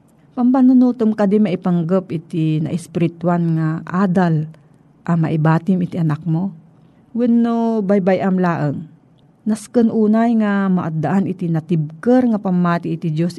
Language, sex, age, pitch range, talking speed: Filipino, female, 40-59, 160-210 Hz, 130 wpm